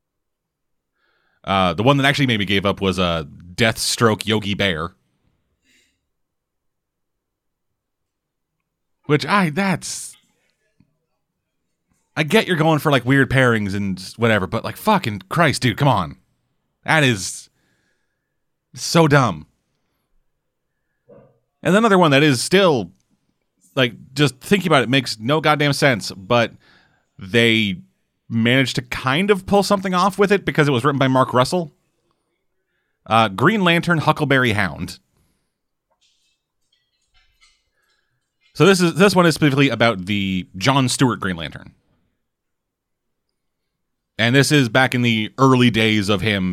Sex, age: male, 30-49